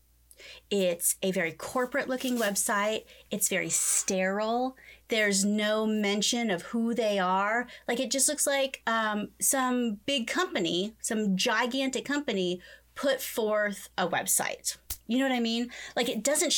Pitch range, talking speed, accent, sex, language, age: 200-270 Hz, 140 wpm, American, female, English, 30-49